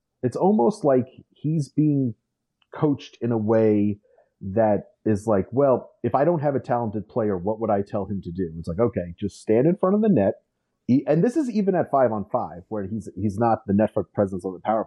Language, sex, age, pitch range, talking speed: English, male, 30-49, 100-120 Hz, 225 wpm